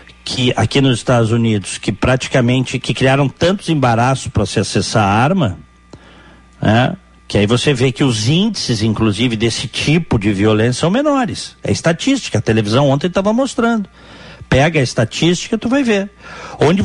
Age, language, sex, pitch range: 60-79, Portuguese, male, 110-160 Hz